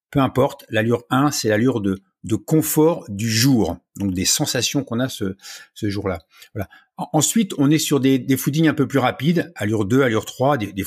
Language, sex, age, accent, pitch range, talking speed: French, male, 50-69, French, 115-160 Hz, 200 wpm